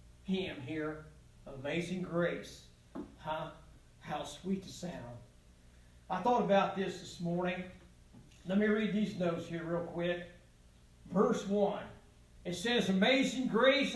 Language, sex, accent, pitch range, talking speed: English, male, American, 175-255 Hz, 125 wpm